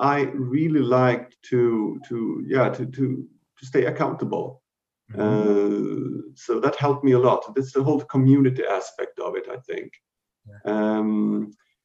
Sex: male